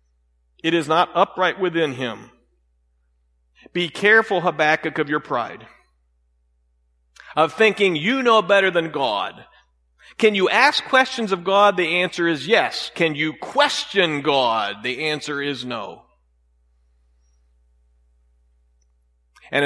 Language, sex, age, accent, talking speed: English, male, 50-69, American, 115 wpm